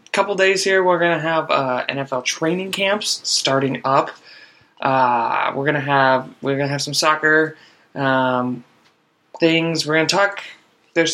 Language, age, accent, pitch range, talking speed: English, 20-39, American, 130-165 Hz, 145 wpm